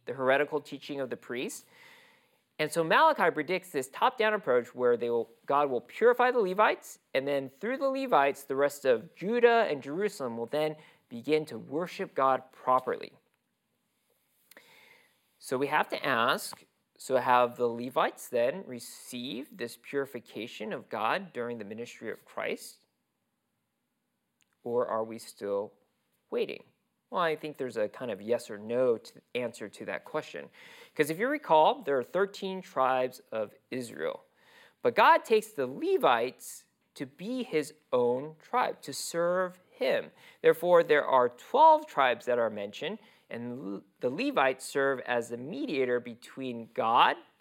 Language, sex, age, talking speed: English, male, 40-59, 145 wpm